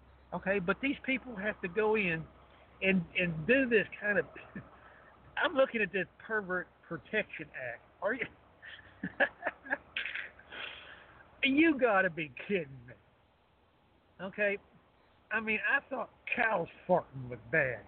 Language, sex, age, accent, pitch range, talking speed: English, male, 60-79, American, 145-215 Hz, 130 wpm